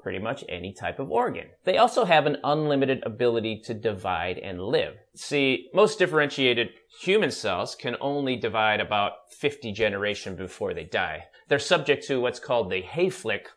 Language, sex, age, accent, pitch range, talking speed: English, male, 30-49, American, 110-170 Hz, 165 wpm